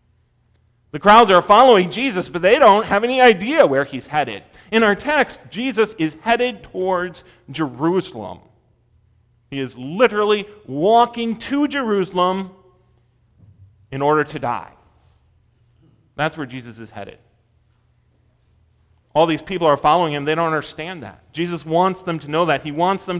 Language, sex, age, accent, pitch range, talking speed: English, male, 40-59, American, 115-160 Hz, 145 wpm